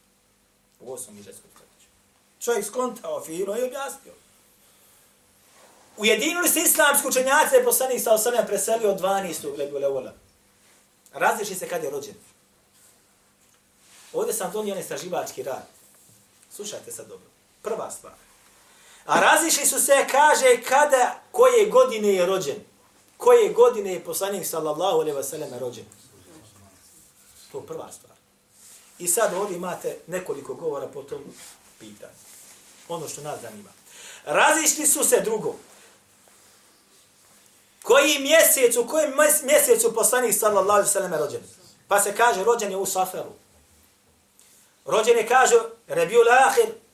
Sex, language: male, English